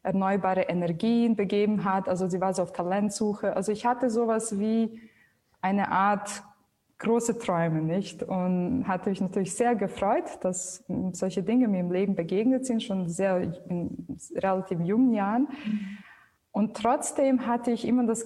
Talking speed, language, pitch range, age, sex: 150 wpm, German, 185-230 Hz, 20-39, female